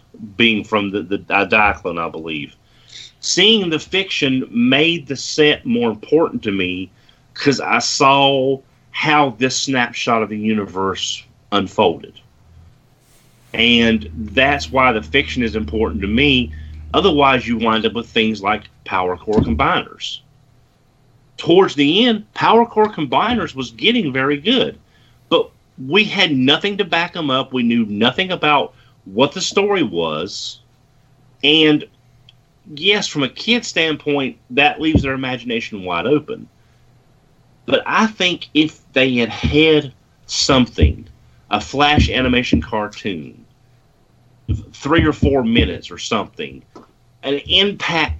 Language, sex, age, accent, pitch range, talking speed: English, male, 40-59, American, 115-145 Hz, 130 wpm